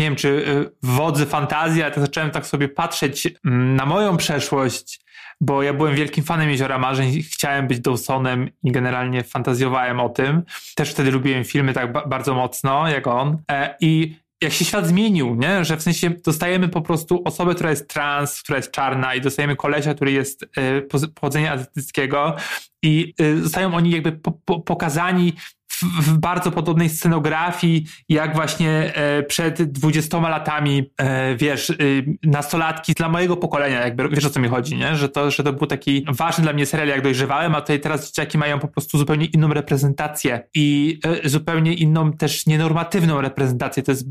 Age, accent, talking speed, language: 20-39, native, 170 wpm, Polish